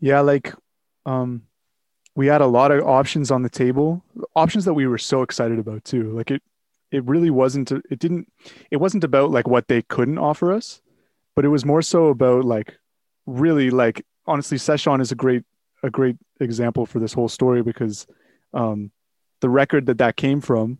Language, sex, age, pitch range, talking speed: English, male, 30-49, 120-140 Hz, 190 wpm